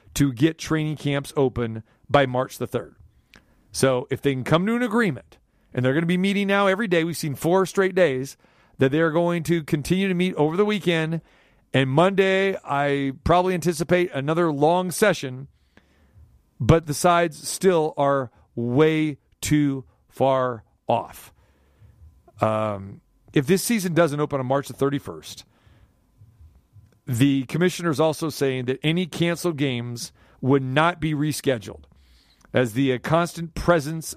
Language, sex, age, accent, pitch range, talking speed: English, male, 40-59, American, 130-165 Hz, 150 wpm